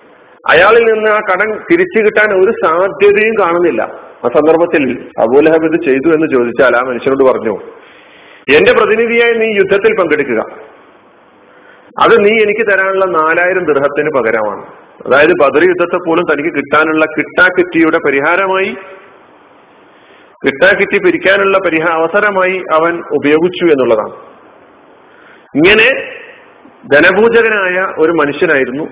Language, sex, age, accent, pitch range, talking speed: Malayalam, male, 40-59, native, 145-215 Hz, 100 wpm